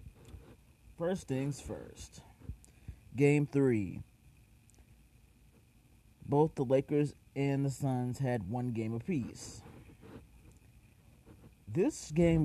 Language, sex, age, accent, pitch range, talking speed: English, male, 30-49, American, 115-150 Hz, 80 wpm